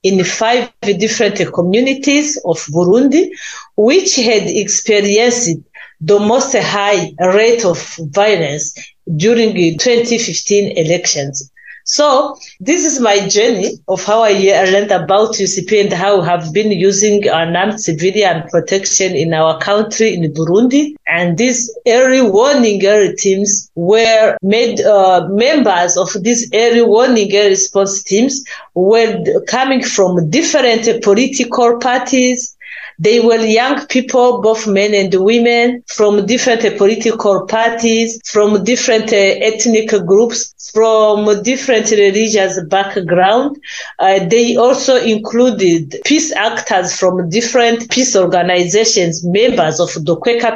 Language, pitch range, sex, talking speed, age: English, 190-235 Hz, female, 120 wpm, 30-49